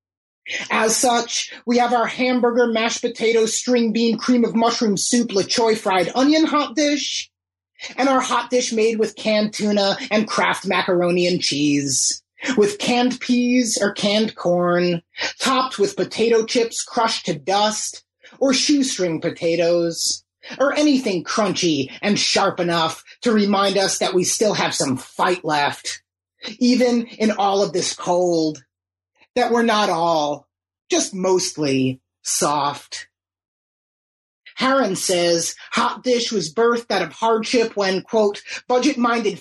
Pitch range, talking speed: 175-240 Hz, 135 wpm